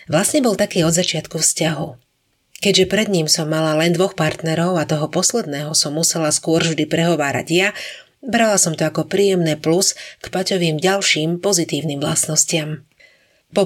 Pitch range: 155-195 Hz